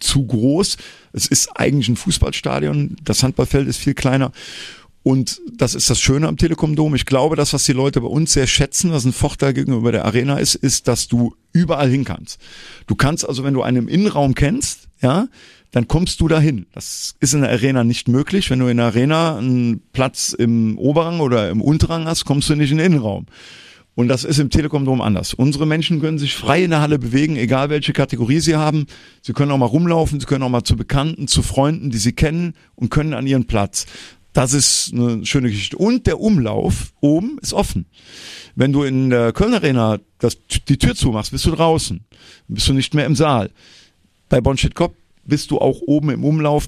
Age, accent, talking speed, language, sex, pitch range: 50-69, German, 210 wpm, German, male, 120-150 Hz